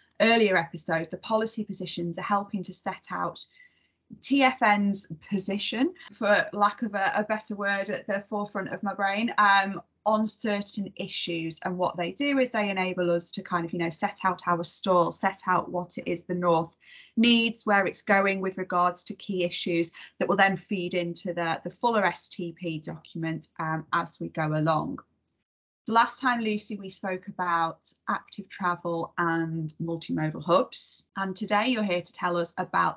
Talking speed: 175 wpm